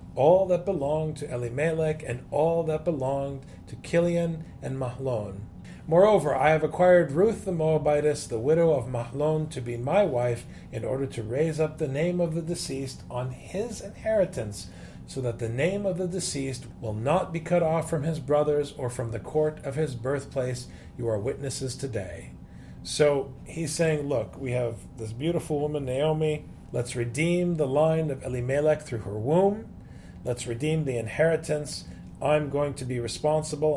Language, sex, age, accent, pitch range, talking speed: English, male, 40-59, American, 120-155 Hz, 170 wpm